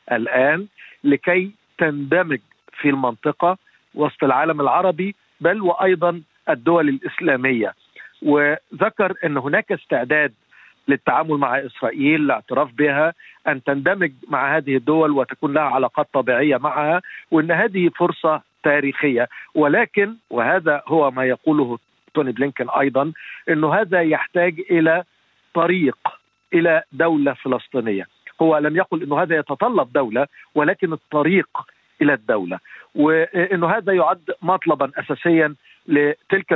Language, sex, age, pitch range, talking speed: Arabic, male, 50-69, 140-180 Hz, 110 wpm